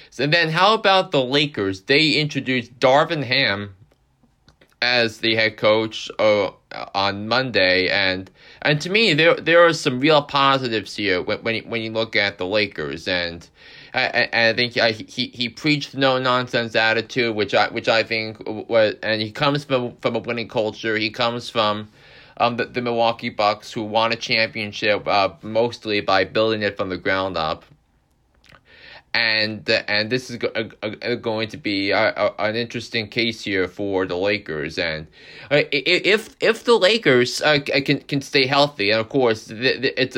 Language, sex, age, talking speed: English, male, 30-49, 175 wpm